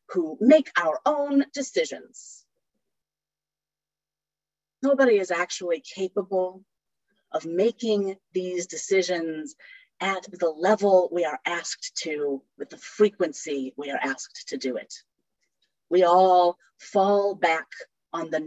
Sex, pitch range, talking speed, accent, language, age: female, 160-240 Hz, 115 wpm, American, English, 30-49